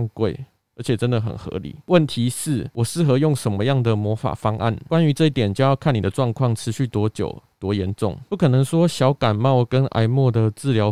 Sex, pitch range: male, 110-140 Hz